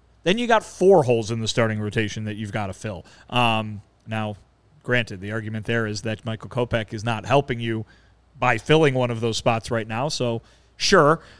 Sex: male